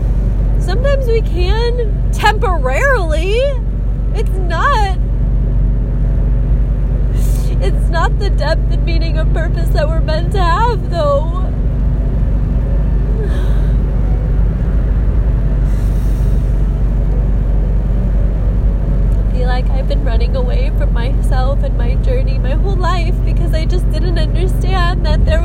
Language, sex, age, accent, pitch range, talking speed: English, female, 20-39, American, 110-120 Hz, 100 wpm